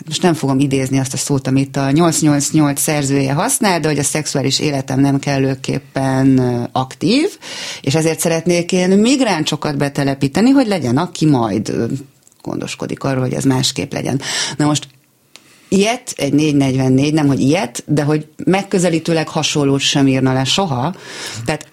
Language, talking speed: Hungarian, 145 wpm